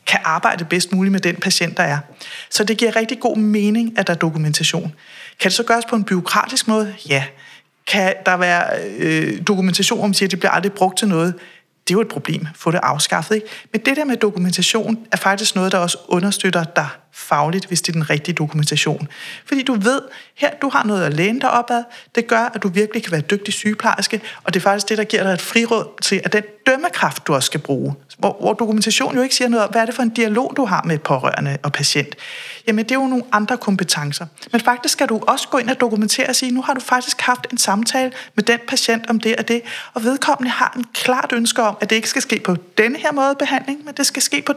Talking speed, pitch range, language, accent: 245 wpm, 185-245 Hz, Danish, native